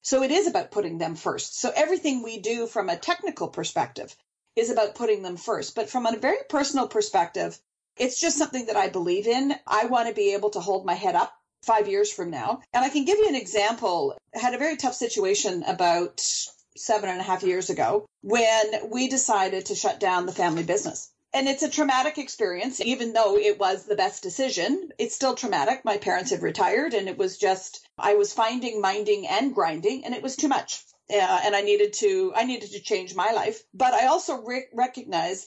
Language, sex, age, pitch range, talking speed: English, female, 40-59, 205-285 Hz, 210 wpm